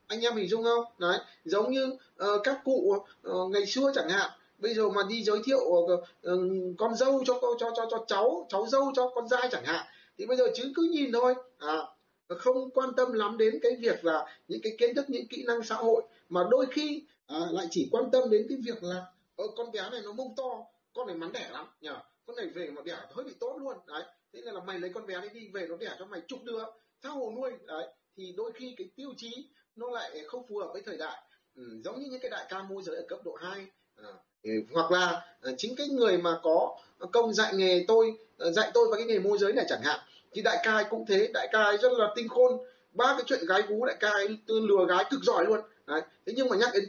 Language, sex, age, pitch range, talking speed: Vietnamese, male, 20-39, 190-265 Hz, 250 wpm